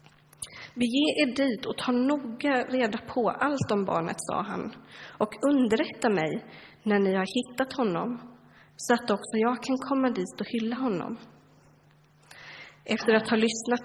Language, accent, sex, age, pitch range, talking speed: Swedish, native, female, 30-49, 205-240 Hz, 150 wpm